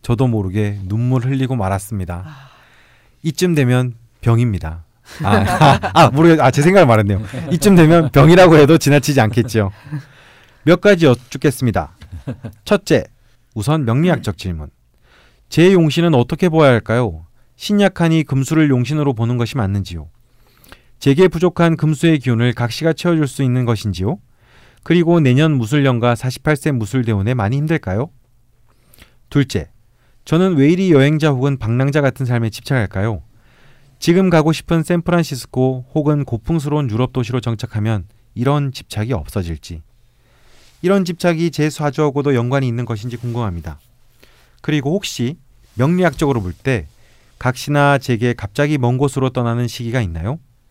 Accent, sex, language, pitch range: native, male, Korean, 115-150 Hz